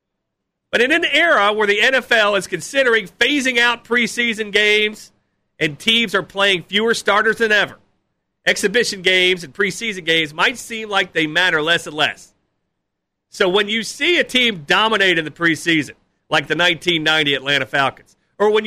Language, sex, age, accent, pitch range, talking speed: English, male, 40-59, American, 170-235 Hz, 165 wpm